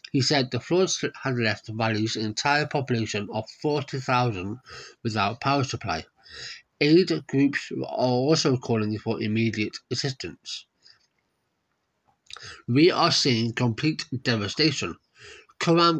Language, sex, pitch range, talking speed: English, male, 115-140 Hz, 115 wpm